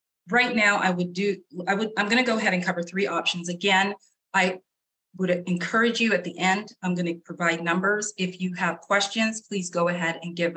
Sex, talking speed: female, 215 wpm